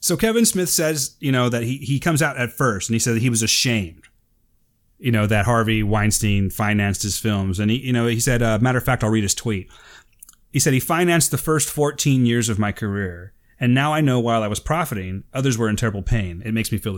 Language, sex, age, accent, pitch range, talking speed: English, male, 30-49, American, 110-145 Hz, 245 wpm